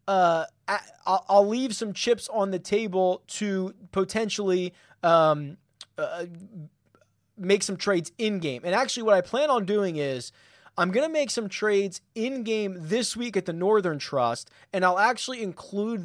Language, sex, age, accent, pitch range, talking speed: English, male, 20-39, American, 170-210 Hz, 165 wpm